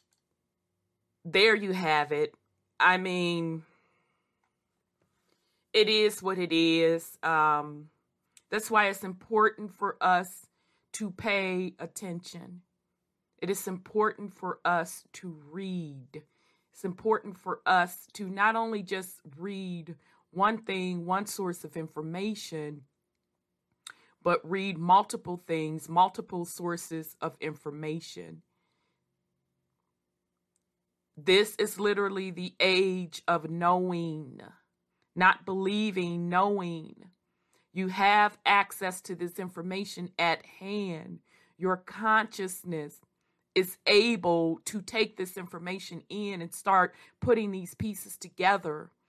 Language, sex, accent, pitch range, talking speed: English, female, American, 160-200 Hz, 105 wpm